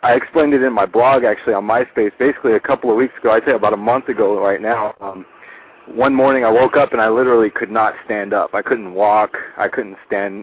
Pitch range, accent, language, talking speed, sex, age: 105-120 Hz, American, English, 240 wpm, male, 30-49